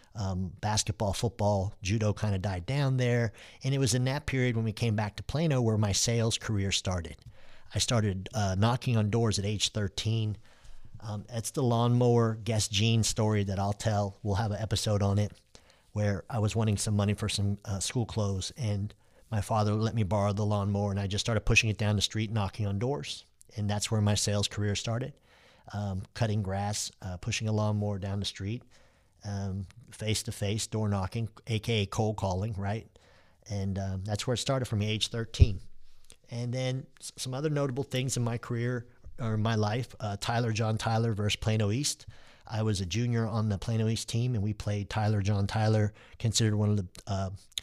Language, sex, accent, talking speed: English, male, American, 195 wpm